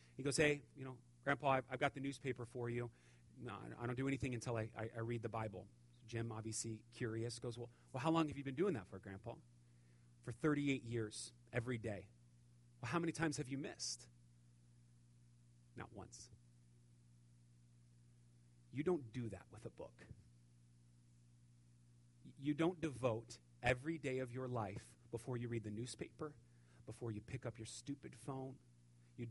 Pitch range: 95-130 Hz